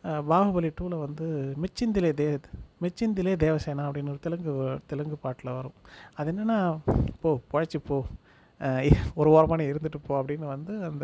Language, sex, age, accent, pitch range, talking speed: Tamil, male, 30-49, native, 135-170 Hz, 130 wpm